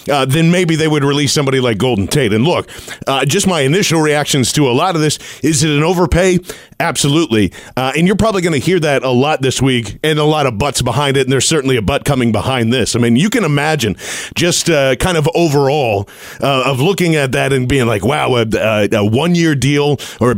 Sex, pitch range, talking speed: male, 125-150 Hz, 235 wpm